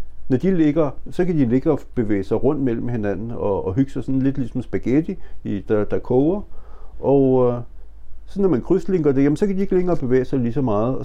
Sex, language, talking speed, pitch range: male, Danish, 245 wpm, 100-130 Hz